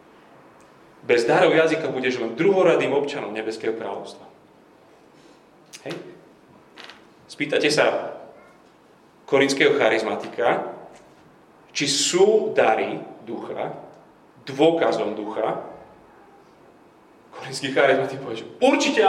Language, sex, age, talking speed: Slovak, male, 30-49, 80 wpm